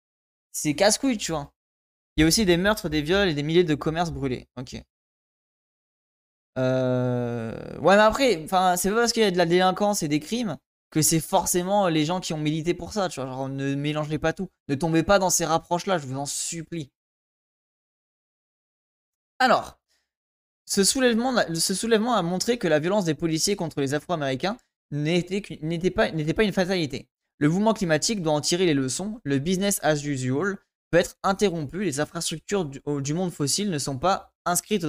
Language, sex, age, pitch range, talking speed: French, male, 20-39, 145-190 Hz, 175 wpm